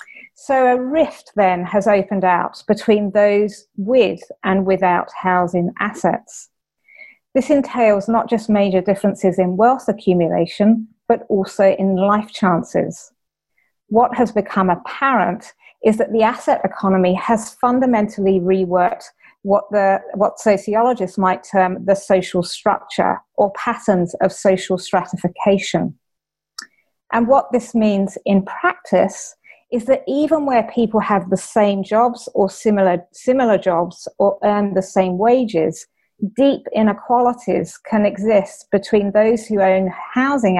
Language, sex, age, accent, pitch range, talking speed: English, female, 30-49, British, 185-230 Hz, 125 wpm